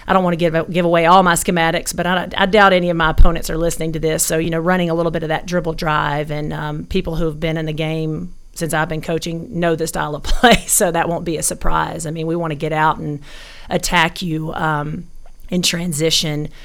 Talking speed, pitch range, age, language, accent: 245 wpm, 155-175 Hz, 40-59, English, American